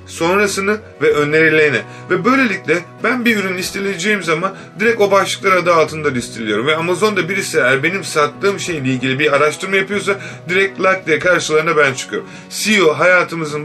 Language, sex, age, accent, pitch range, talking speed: Turkish, male, 30-49, native, 140-190 Hz, 155 wpm